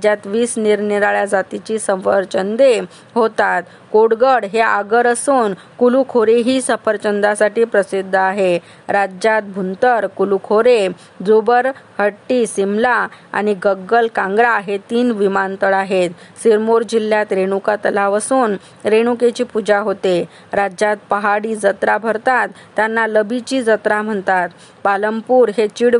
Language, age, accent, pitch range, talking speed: Marathi, 20-39, native, 195-230 Hz, 110 wpm